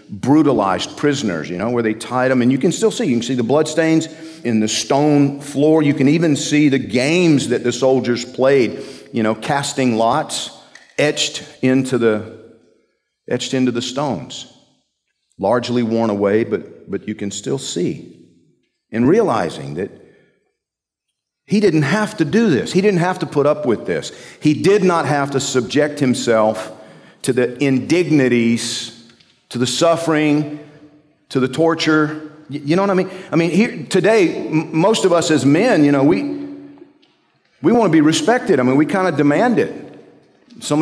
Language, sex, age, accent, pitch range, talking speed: English, male, 50-69, American, 125-165 Hz, 165 wpm